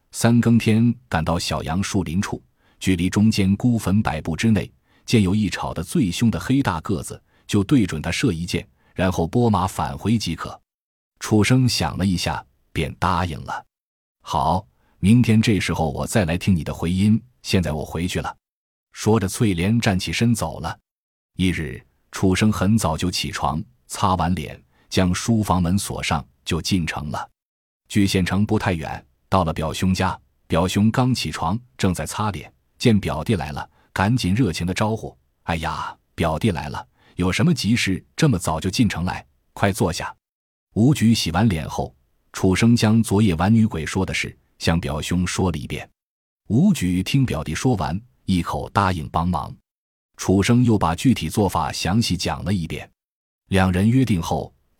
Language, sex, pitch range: Chinese, male, 85-110 Hz